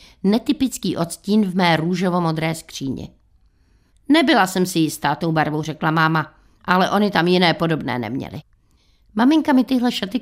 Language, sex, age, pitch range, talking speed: Czech, female, 50-69, 155-185 Hz, 140 wpm